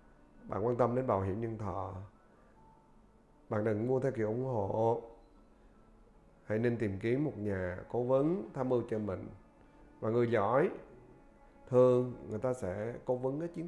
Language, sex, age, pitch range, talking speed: Vietnamese, male, 30-49, 105-135 Hz, 165 wpm